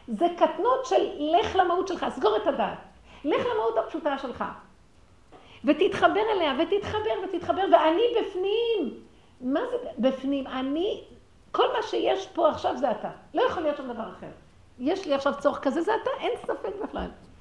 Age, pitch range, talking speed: 50-69, 200-325 Hz, 160 wpm